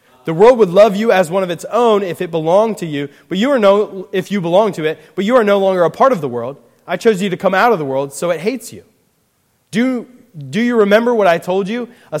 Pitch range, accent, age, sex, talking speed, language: 165-220 Hz, American, 30-49, male, 275 wpm, English